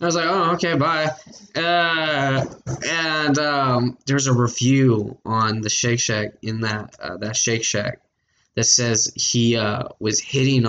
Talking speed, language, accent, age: 155 wpm, English, American, 10-29